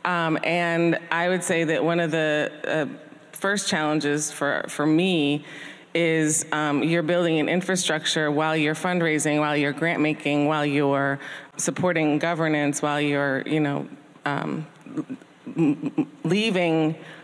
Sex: female